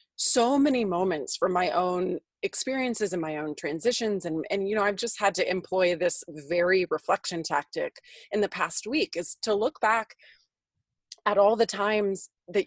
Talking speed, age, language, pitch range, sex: 175 wpm, 30-49, English, 175-225 Hz, female